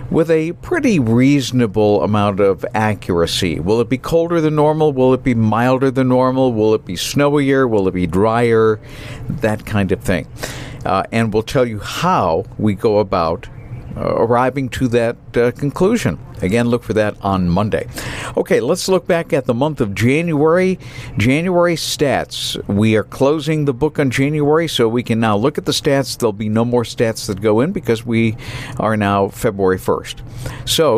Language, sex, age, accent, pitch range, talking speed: English, male, 50-69, American, 110-140 Hz, 180 wpm